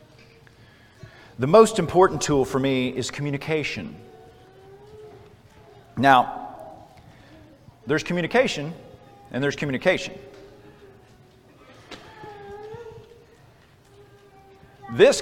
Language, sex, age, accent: English, male, 50-69, American